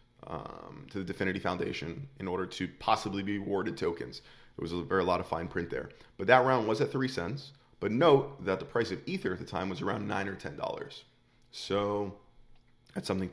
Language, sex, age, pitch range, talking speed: English, male, 20-39, 95-120 Hz, 210 wpm